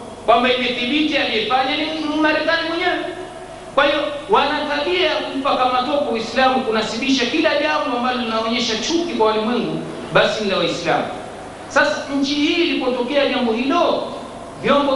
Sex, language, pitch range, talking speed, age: male, Swahili, 225-300 Hz, 130 wpm, 50-69